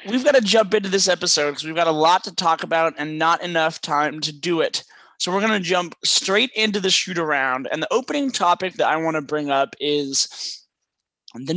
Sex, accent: male, American